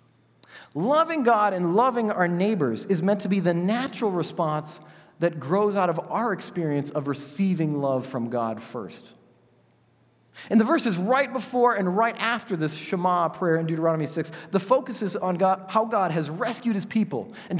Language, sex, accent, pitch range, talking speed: English, male, American, 160-225 Hz, 170 wpm